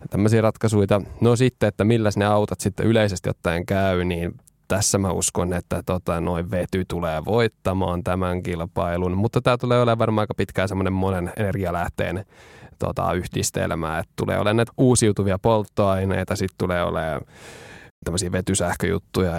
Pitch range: 90-105 Hz